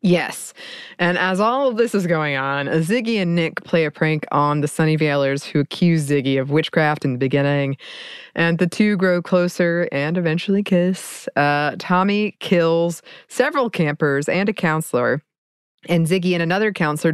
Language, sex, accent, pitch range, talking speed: English, female, American, 150-185 Hz, 165 wpm